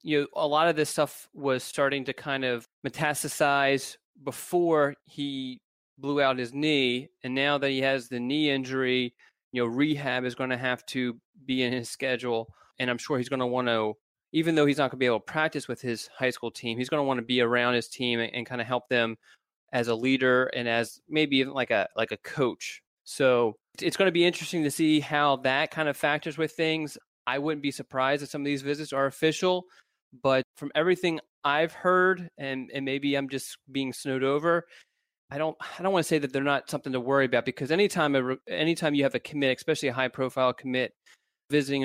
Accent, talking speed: American, 220 wpm